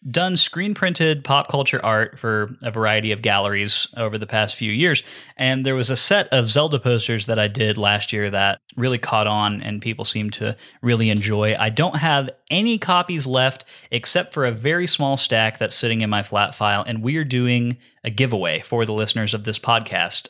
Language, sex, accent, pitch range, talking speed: English, male, American, 110-135 Hz, 200 wpm